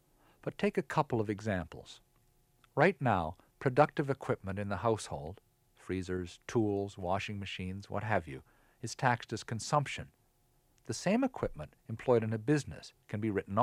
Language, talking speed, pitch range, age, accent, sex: English, 150 wpm, 95-125 Hz, 50-69, American, male